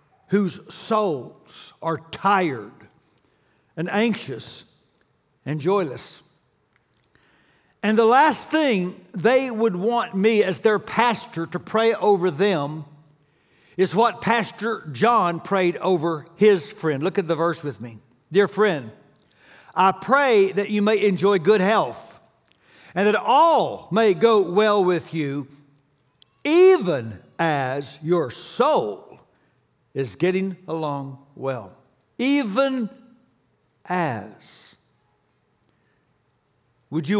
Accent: American